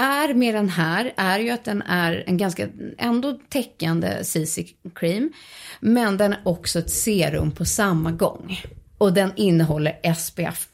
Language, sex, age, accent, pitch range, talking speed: Swedish, female, 30-49, native, 185-250 Hz, 150 wpm